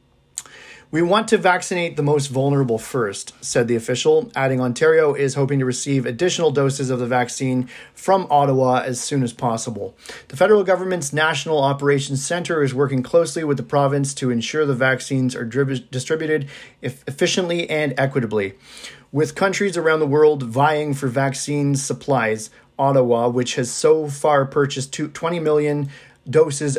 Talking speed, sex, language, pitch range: 155 wpm, male, English, 130-155 Hz